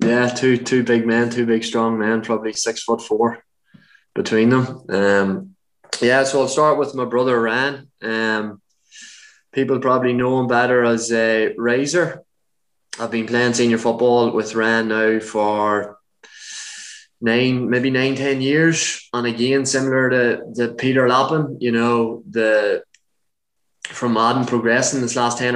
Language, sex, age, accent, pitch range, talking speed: English, male, 20-39, Irish, 110-130 Hz, 155 wpm